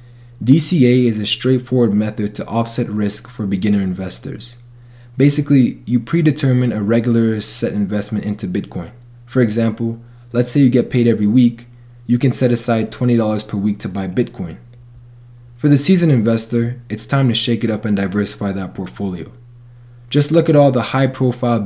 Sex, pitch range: male, 110-120 Hz